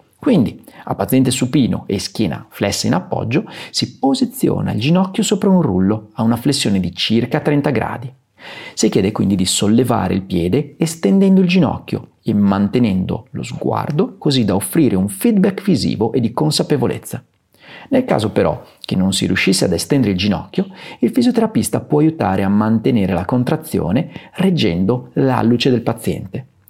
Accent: native